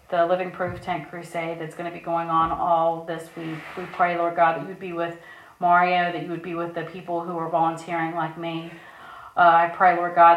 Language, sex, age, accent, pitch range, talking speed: English, female, 40-59, American, 170-200 Hz, 230 wpm